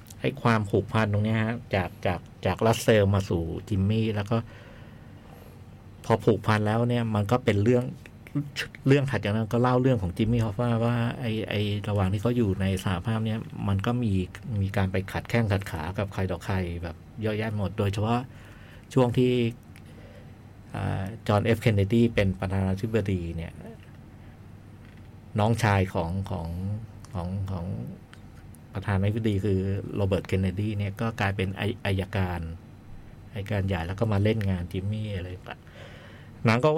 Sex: male